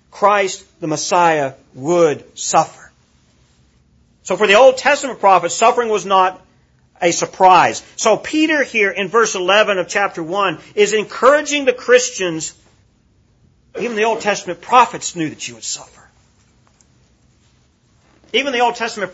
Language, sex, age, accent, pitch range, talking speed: English, male, 40-59, American, 140-225 Hz, 135 wpm